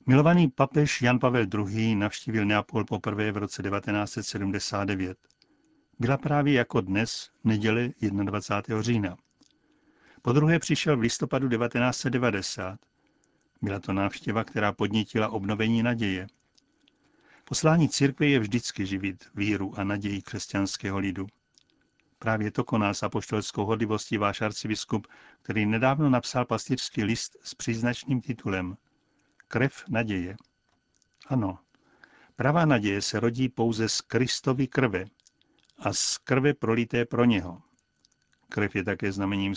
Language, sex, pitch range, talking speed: Czech, male, 105-135 Hz, 120 wpm